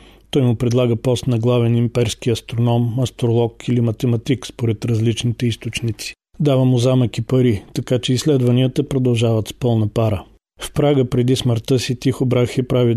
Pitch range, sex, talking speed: 115-130 Hz, male, 155 wpm